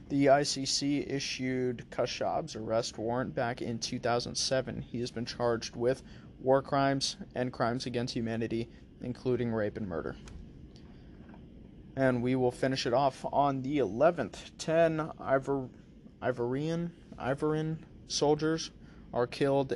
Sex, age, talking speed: male, 20-39, 120 wpm